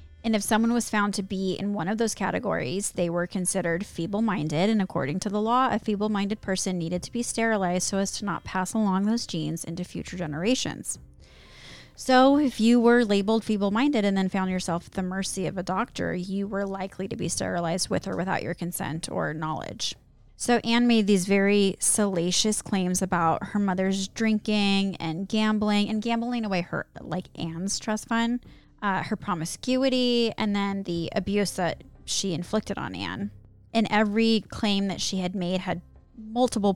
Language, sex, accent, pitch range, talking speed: English, female, American, 180-215 Hz, 180 wpm